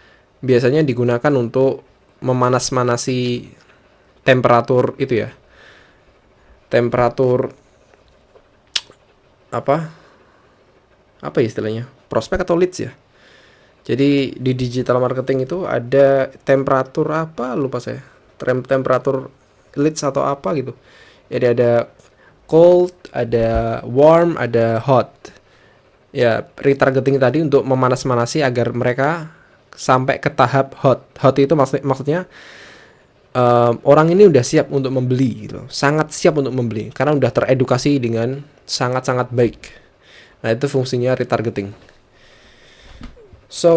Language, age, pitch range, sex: Indonesian, 20-39, 120-140 Hz, male